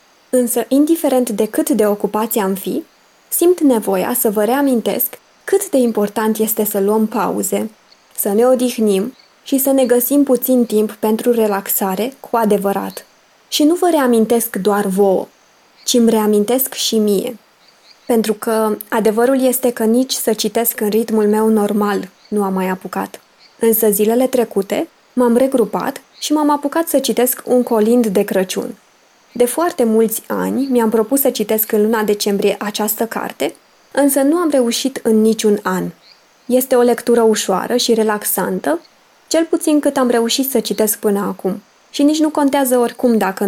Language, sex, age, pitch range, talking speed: Romanian, female, 20-39, 210-255 Hz, 160 wpm